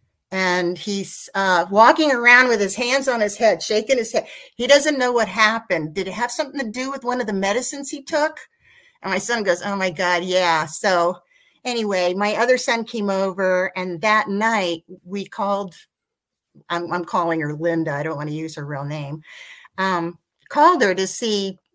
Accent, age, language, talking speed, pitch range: American, 50-69, English, 195 wpm, 180-235 Hz